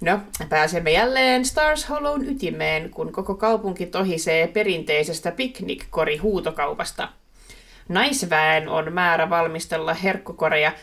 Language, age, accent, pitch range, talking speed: Finnish, 30-49, native, 165-215 Hz, 95 wpm